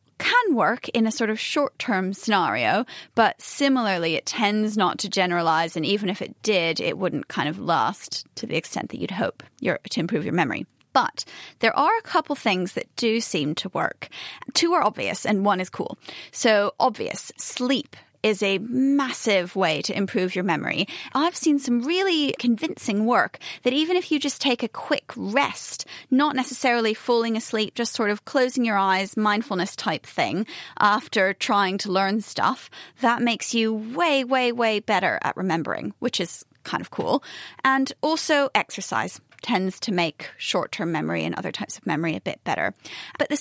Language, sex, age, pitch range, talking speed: English, female, 30-49, 195-270 Hz, 180 wpm